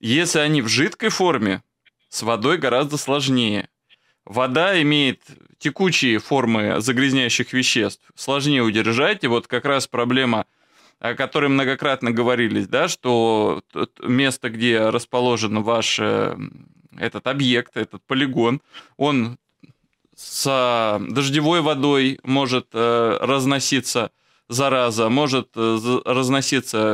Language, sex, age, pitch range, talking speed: Russian, male, 20-39, 120-150 Hz, 100 wpm